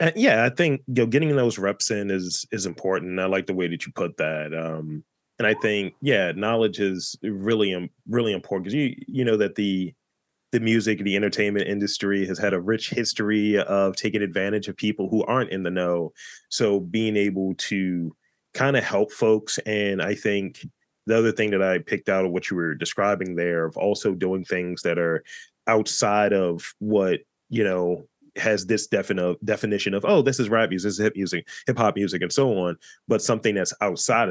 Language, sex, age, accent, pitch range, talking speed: English, male, 30-49, American, 95-115 Hz, 200 wpm